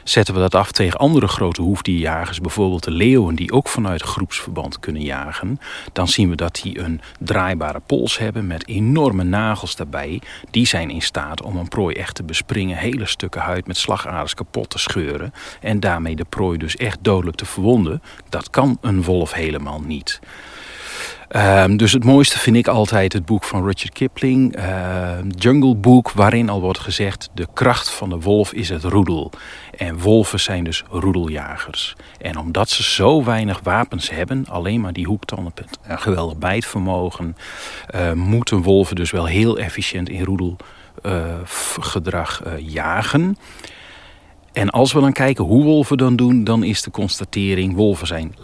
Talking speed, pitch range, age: 170 wpm, 90-110 Hz, 40-59